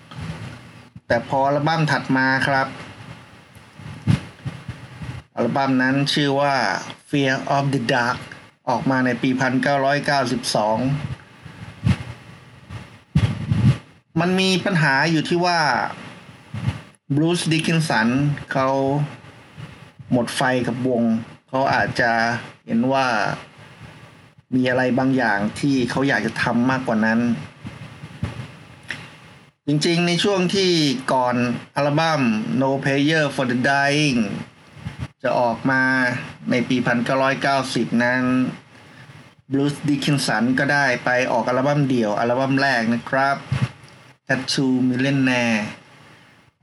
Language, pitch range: Thai, 125-145 Hz